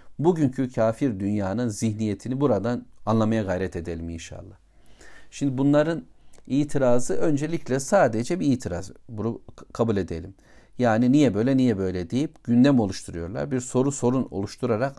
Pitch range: 105-135 Hz